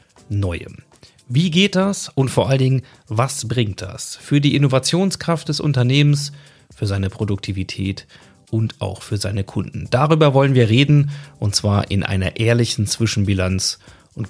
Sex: male